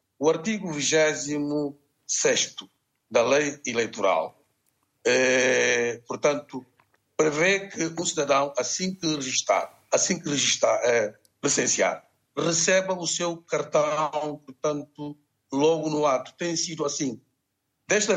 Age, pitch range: 60-79, 130-170 Hz